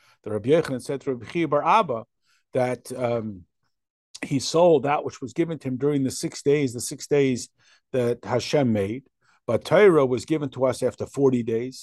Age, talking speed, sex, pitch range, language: 50-69, 145 wpm, male, 125-165 Hz, English